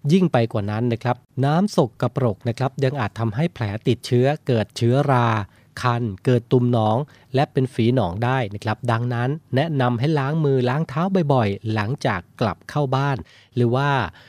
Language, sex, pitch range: Thai, male, 115-145 Hz